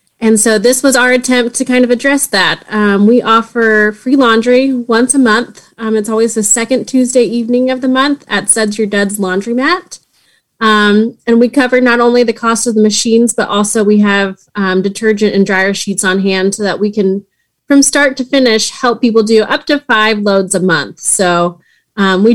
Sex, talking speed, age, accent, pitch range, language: female, 205 wpm, 30-49, American, 195-235 Hz, English